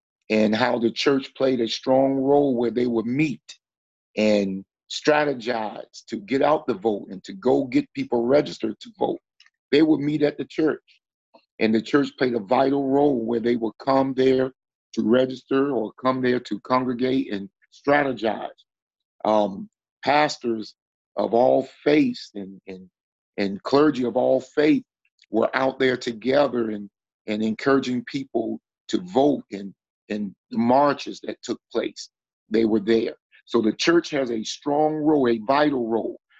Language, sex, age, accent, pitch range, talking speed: English, male, 50-69, American, 115-135 Hz, 160 wpm